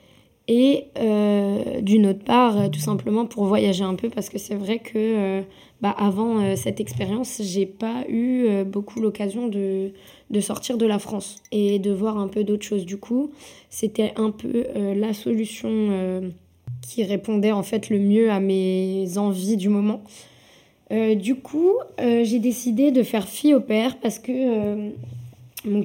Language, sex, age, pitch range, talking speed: French, female, 20-39, 200-230 Hz, 175 wpm